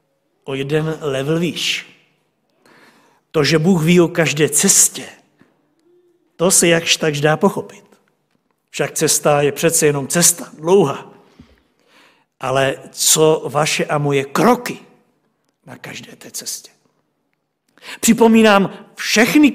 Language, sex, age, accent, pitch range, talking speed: Czech, male, 60-79, native, 145-220 Hz, 110 wpm